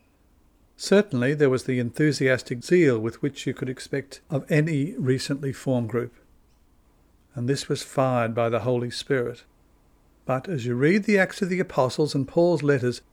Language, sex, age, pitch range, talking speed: English, male, 60-79, 125-160 Hz, 165 wpm